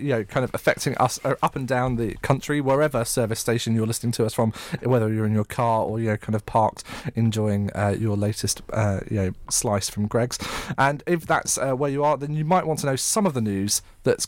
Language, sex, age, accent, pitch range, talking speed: English, male, 30-49, British, 110-135 Hz, 245 wpm